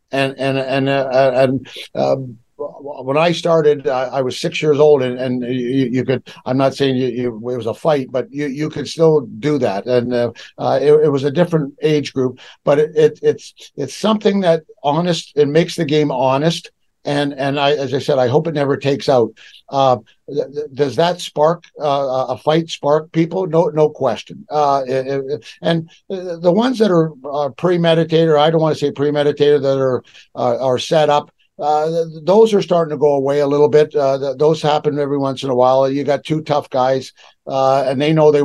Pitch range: 135-165 Hz